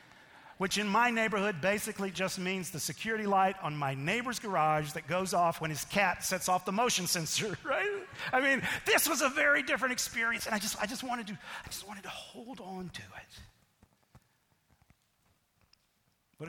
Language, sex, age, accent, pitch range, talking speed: English, male, 50-69, American, 160-200 Hz, 180 wpm